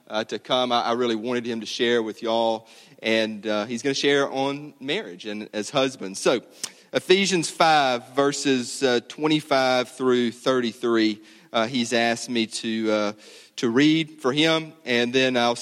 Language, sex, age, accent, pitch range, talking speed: English, male, 30-49, American, 115-145 Hz, 170 wpm